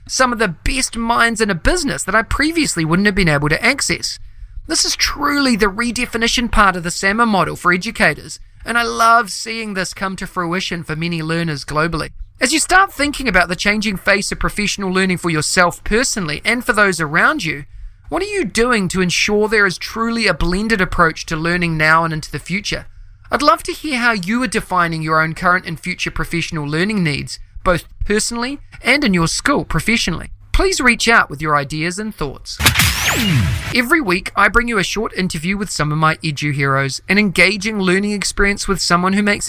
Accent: Australian